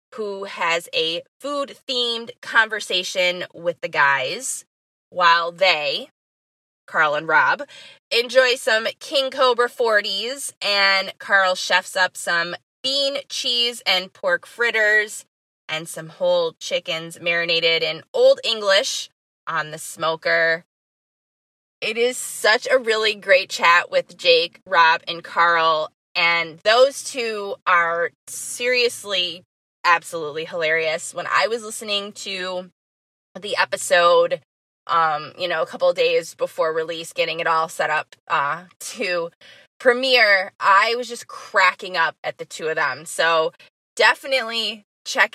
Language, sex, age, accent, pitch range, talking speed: English, female, 20-39, American, 170-260 Hz, 125 wpm